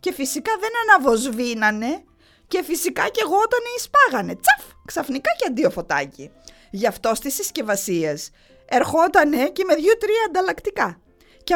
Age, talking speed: 20-39, 130 wpm